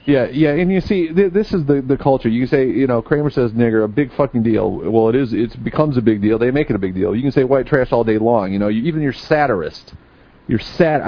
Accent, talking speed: American, 280 wpm